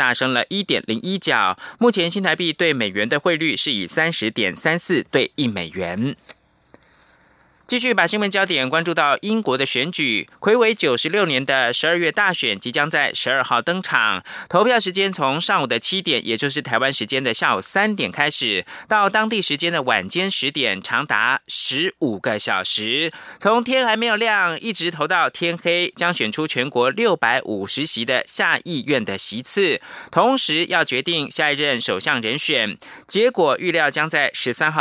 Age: 20-39